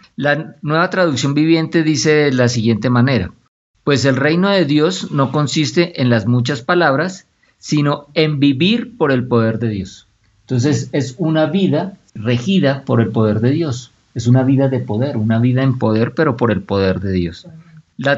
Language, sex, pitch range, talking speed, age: Spanish, male, 115-150 Hz, 180 wpm, 50-69